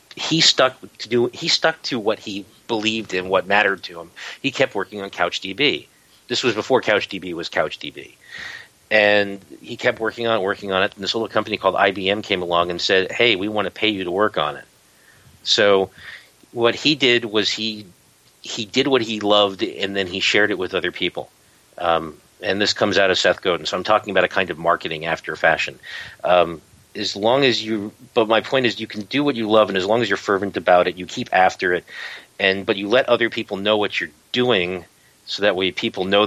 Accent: American